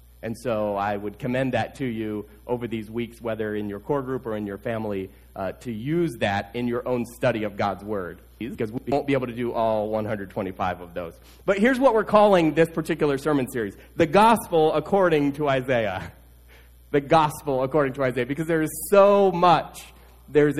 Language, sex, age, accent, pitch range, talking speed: English, male, 30-49, American, 115-165 Hz, 200 wpm